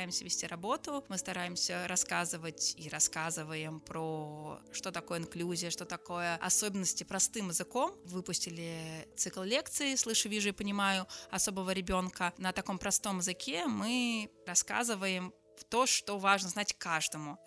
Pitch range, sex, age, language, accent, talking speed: 180-210 Hz, female, 20-39, Russian, native, 130 wpm